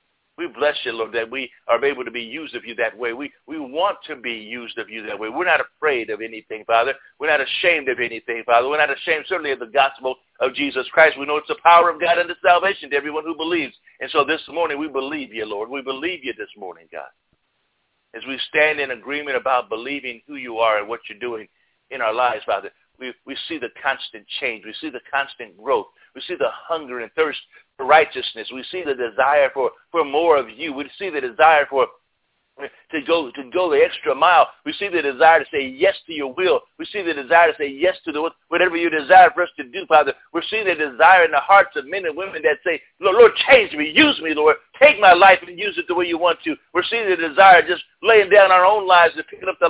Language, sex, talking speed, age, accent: English, male, 250 wpm, 60-79, American